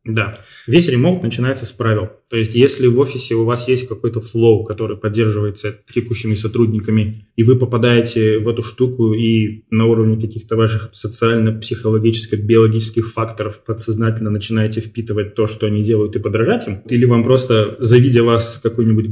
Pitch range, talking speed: 110-120 Hz, 155 wpm